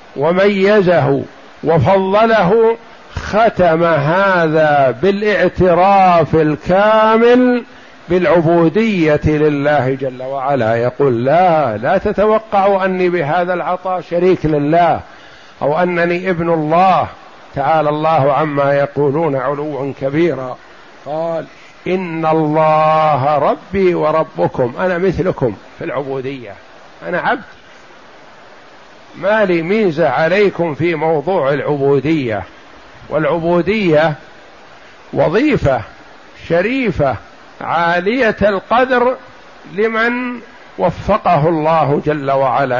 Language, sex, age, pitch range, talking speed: Arabic, male, 50-69, 150-190 Hz, 80 wpm